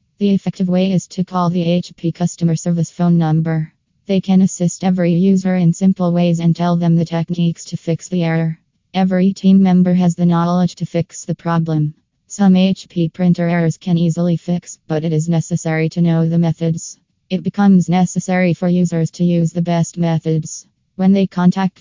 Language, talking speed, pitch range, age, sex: English, 185 wpm, 165-180 Hz, 20-39, female